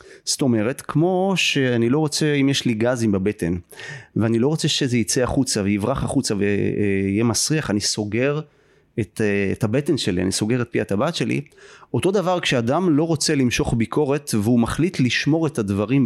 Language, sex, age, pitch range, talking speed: Hebrew, male, 30-49, 110-150 Hz, 170 wpm